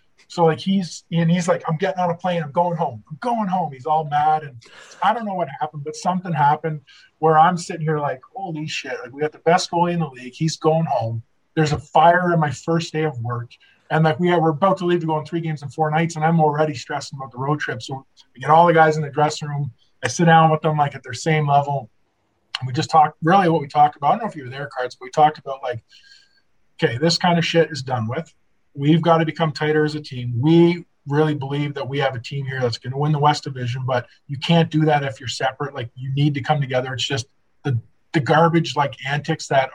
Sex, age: male, 20-39